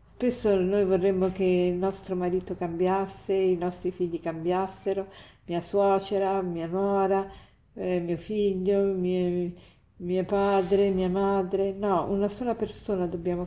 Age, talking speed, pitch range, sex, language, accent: 50-69, 125 wpm, 180-200 Hz, female, Italian, native